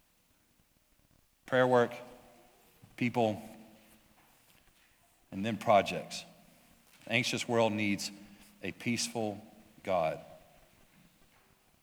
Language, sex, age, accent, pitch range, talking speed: English, male, 40-59, American, 110-125 Hz, 60 wpm